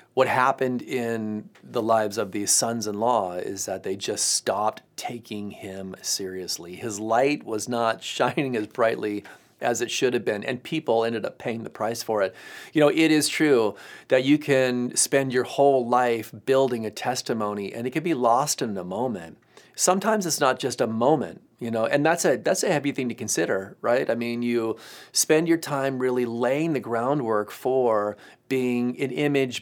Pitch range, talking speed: 110-130 Hz, 185 wpm